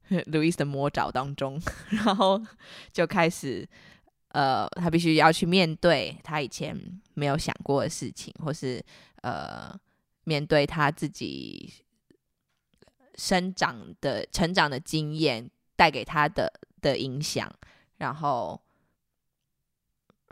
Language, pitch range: Chinese, 140-170 Hz